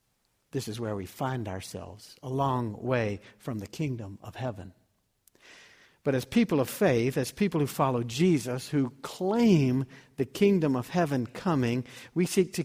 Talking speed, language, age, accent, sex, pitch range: 160 wpm, English, 60-79, American, male, 120-165 Hz